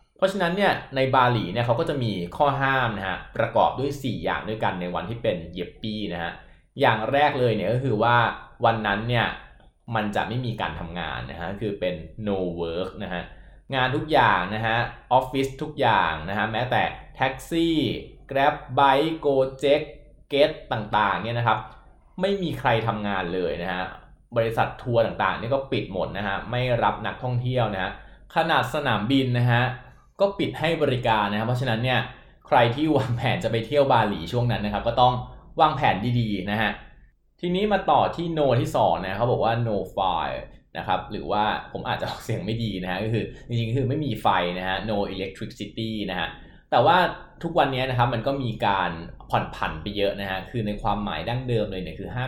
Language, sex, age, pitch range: Thai, male, 20-39, 100-135 Hz